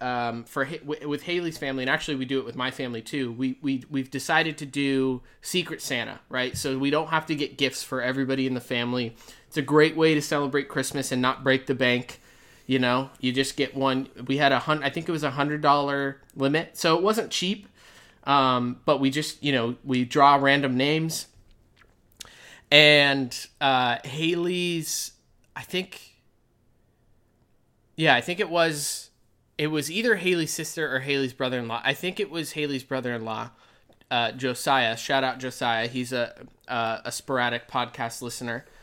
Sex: male